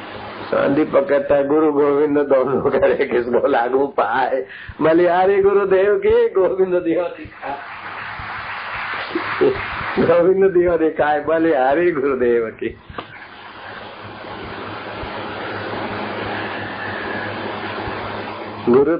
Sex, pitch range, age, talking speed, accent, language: male, 115-150 Hz, 60-79, 75 wpm, native, Hindi